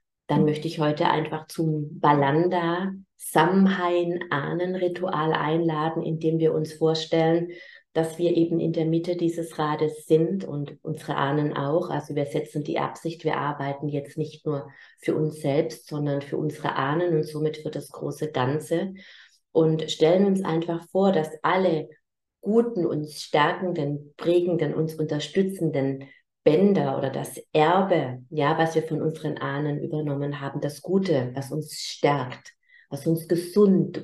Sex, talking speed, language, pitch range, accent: female, 145 wpm, German, 150-175 Hz, German